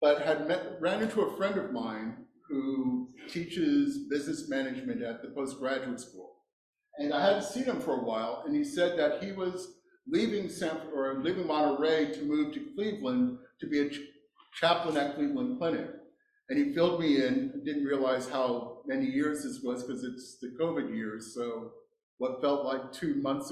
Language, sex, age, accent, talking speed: English, male, 50-69, American, 180 wpm